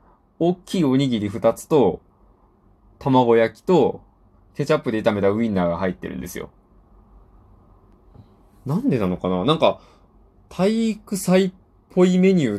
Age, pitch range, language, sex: 20-39, 100-165 Hz, Japanese, male